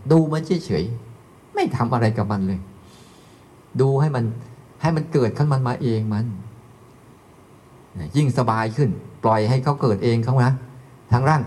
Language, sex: Thai, male